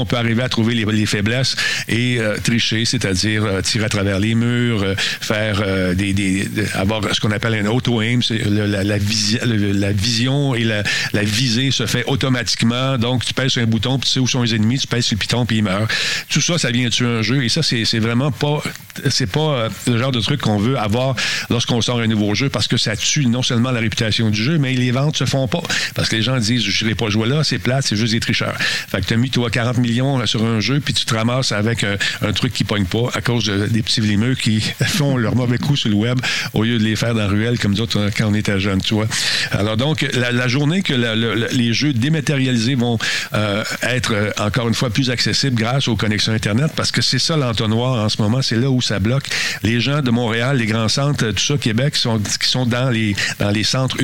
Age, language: 50-69, French